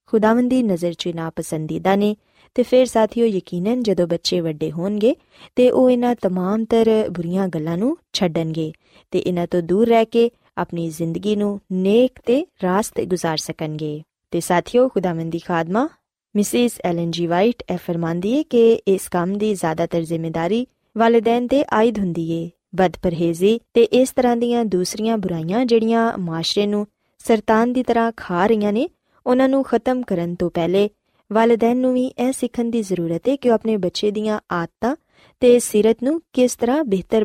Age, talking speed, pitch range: 20-39, 110 wpm, 175-240 Hz